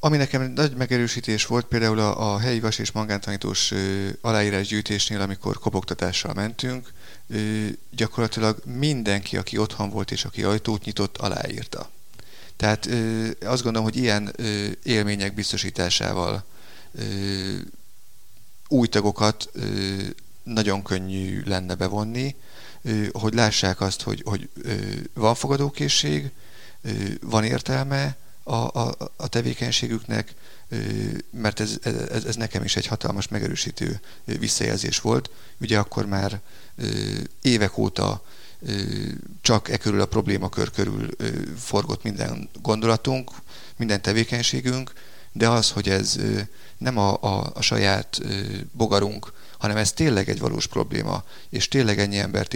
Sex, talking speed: male, 120 wpm